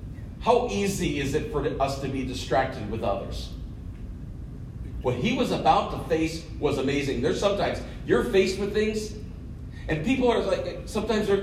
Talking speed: 160 wpm